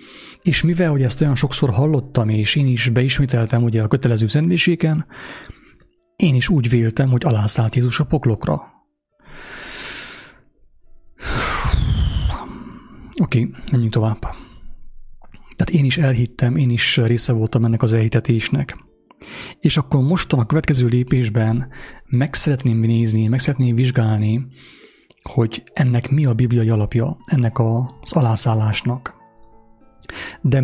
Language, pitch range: English, 115-140 Hz